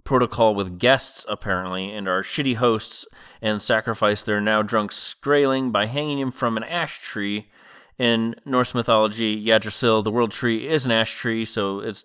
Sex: male